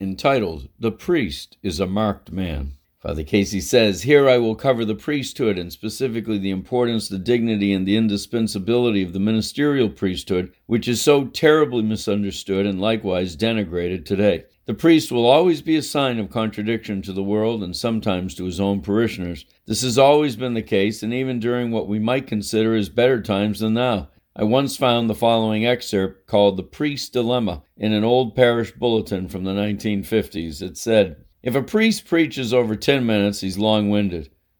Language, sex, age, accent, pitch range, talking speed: English, male, 60-79, American, 100-130 Hz, 180 wpm